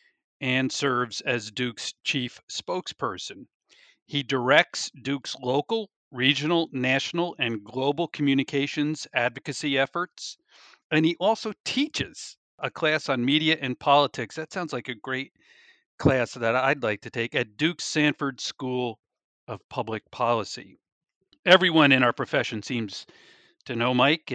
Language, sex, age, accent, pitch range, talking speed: English, male, 50-69, American, 120-155 Hz, 130 wpm